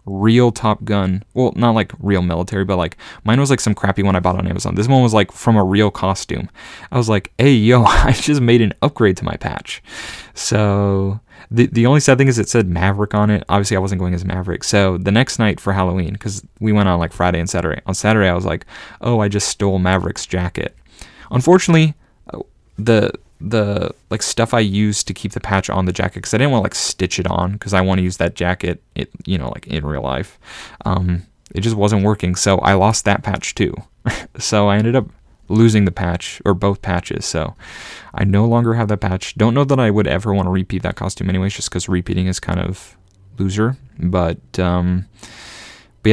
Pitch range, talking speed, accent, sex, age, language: 90-110 Hz, 225 wpm, American, male, 30-49, English